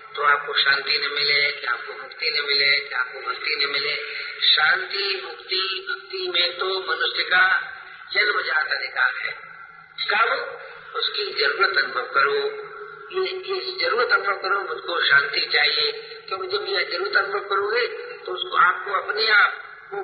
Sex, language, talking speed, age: male, Hindi, 150 wpm, 50-69